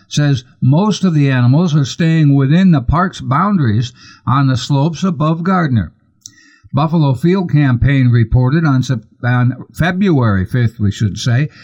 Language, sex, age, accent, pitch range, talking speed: English, male, 60-79, American, 125-160 Hz, 140 wpm